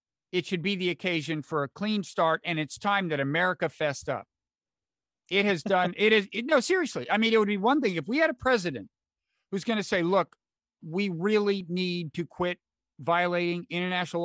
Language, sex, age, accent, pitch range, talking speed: English, male, 50-69, American, 160-225 Hz, 205 wpm